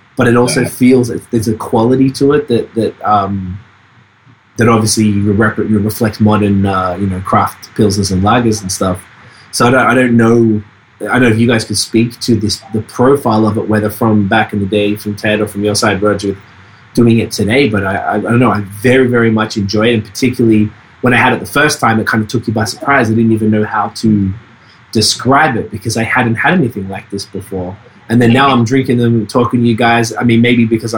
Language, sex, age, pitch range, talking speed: English, male, 20-39, 105-120 Hz, 230 wpm